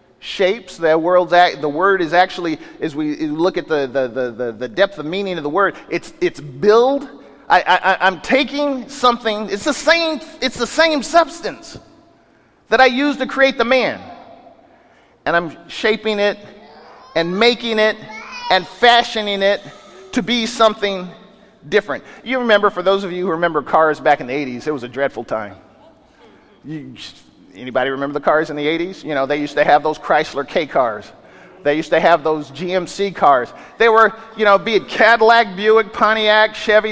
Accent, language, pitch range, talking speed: American, English, 160-235 Hz, 180 wpm